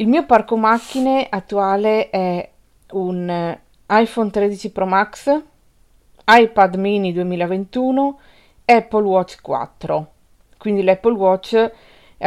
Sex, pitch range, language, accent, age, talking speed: female, 180-220 Hz, Italian, native, 40-59, 105 wpm